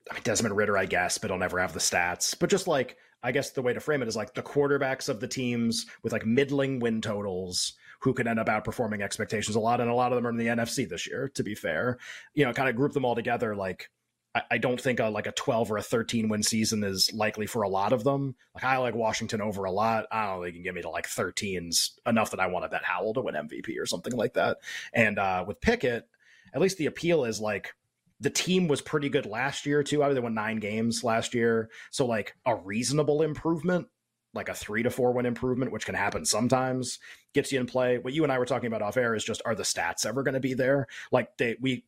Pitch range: 105-130 Hz